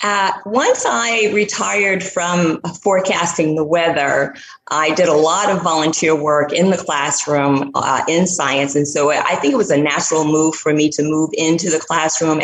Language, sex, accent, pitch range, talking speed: English, female, American, 155-225 Hz, 180 wpm